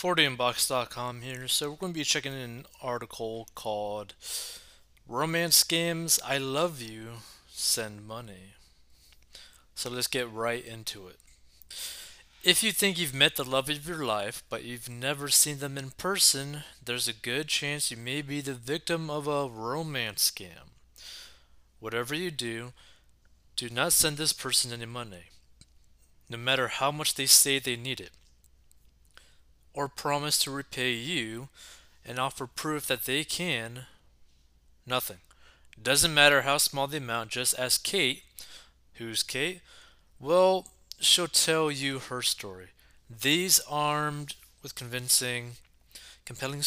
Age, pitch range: 20-39, 115-145 Hz